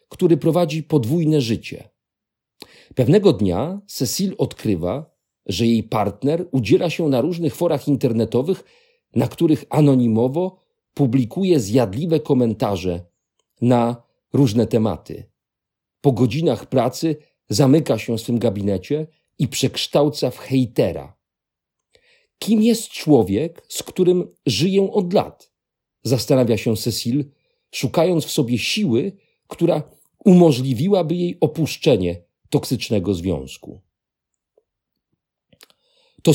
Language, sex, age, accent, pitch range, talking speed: Polish, male, 50-69, native, 120-170 Hz, 100 wpm